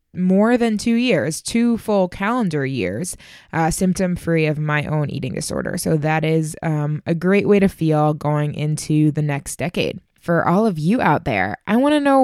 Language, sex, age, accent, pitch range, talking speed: English, female, 20-39, American, 155-190 Hz, 195 wpm